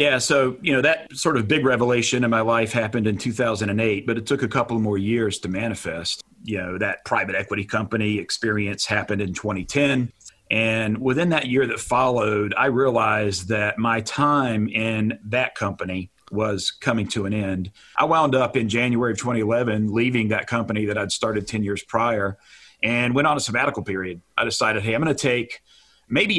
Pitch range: 105-125 Hz